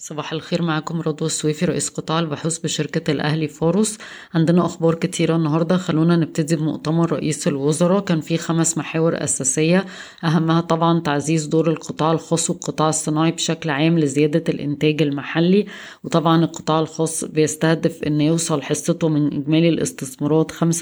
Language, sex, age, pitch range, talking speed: Arabic, female, 20-39, 150-165 Hz, 140 wpm